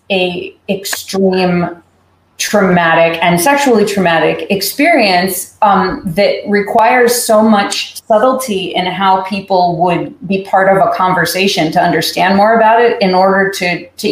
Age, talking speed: 30-49, 130 wpm